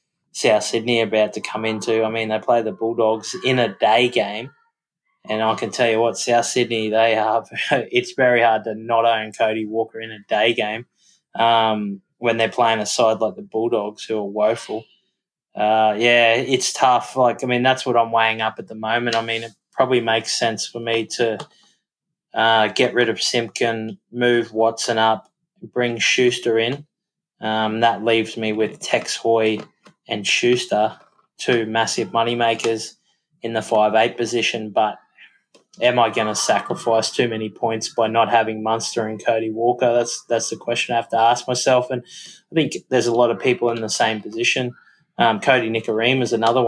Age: 20-39